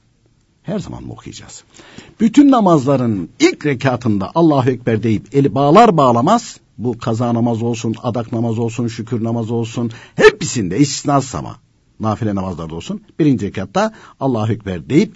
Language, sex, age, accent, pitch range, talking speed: Turkish, male, 60-79, native, 95-135 Hz, 140 wpm